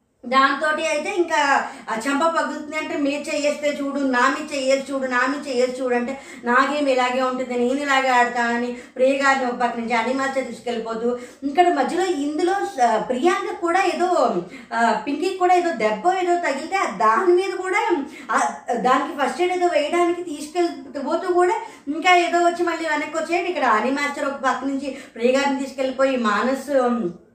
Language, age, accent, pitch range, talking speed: Telugu, 20-39, native, 255-330 Hz, 145 wpm